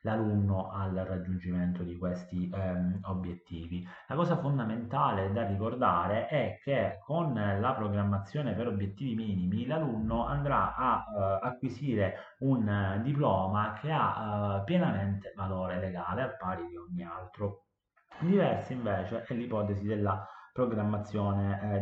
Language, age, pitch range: Italian, 30-49, 95-115 Hz